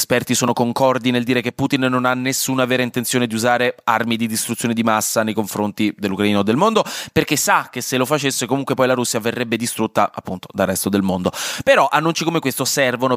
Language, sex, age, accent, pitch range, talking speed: Italian, male, 20-39, native, 115-170 Hz, 215 wpm